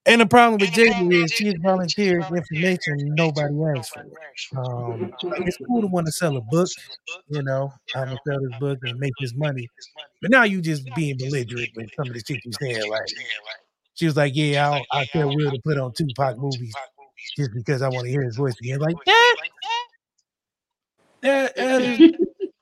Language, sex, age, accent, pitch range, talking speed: English, male, 30-49, American, 140-195 Hz, 200 wpm